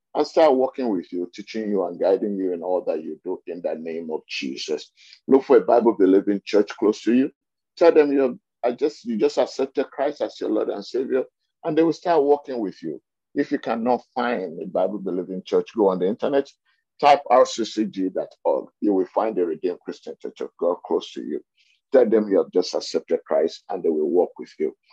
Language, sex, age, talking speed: English, male, 50-69, 210 wpm